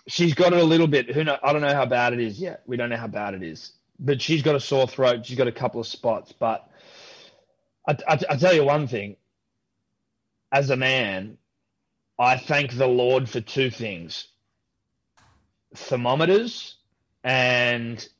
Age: 20-39